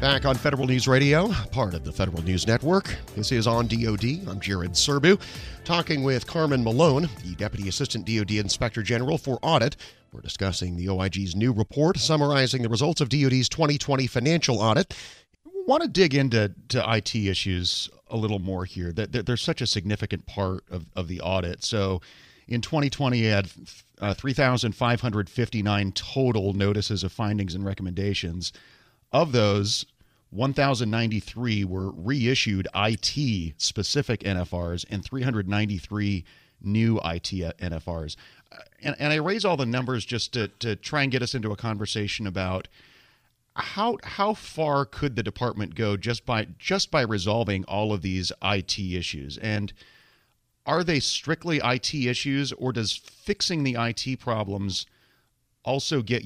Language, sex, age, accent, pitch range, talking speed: English, male, 30-49, American, 100-130 Hz, 145 wpm